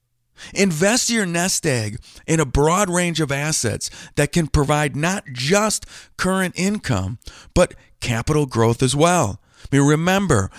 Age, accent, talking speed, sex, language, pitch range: 50-69, American, 130 wpm, male, English, 120-165 Hz